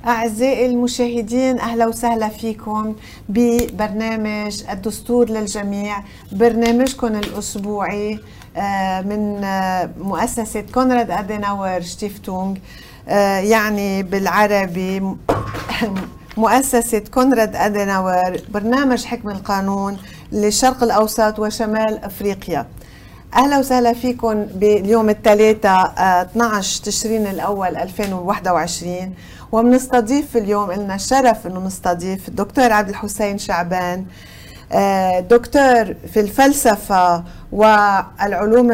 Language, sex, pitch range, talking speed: Arabic, female, 195-230 Hz, 75 wpm